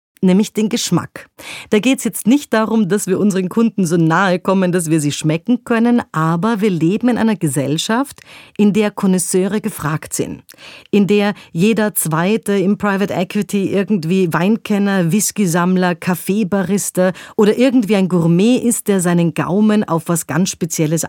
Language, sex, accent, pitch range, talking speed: German, female, German, 165-205 Hz, 155 wpm